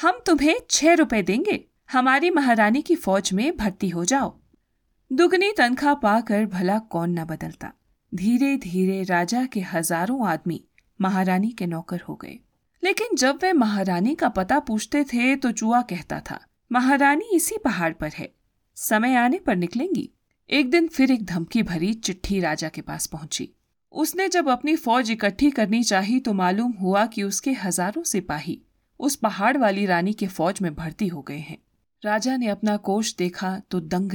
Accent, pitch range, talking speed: native, 180-260 Hz, 165 wpm